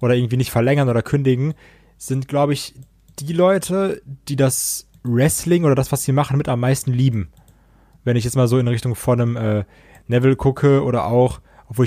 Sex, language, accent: male, German, German